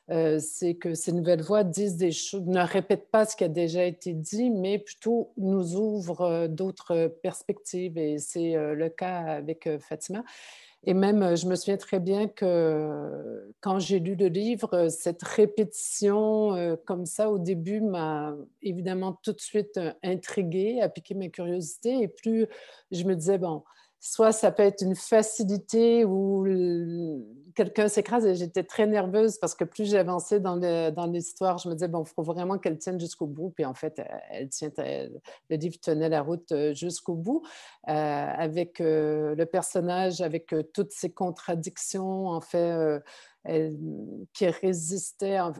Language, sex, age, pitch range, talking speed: French, female, 50-69, 170-200 Hz, 165 wpm